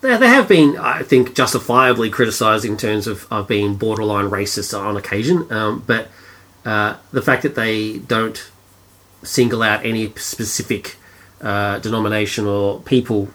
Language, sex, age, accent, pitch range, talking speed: English, male, 30-49, Australian, 100-120 Hz, 145 wpm